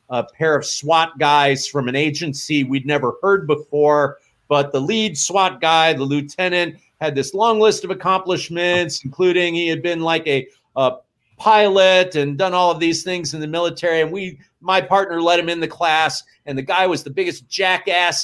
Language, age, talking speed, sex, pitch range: English, 40-59, 190 wpm, male, 140-175 Hz